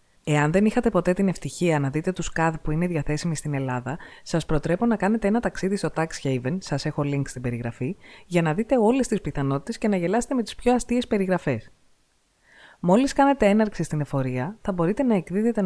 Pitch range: 145-200 Hz